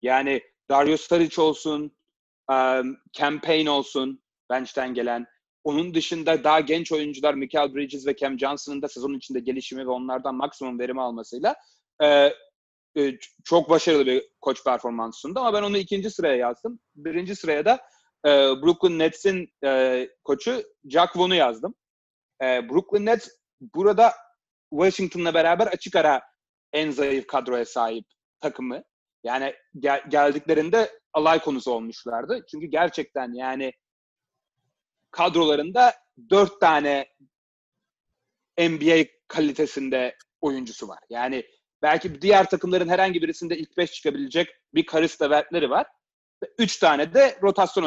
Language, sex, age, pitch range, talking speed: Turkish, male, 30-49, 135-180 Hz, 120 wpm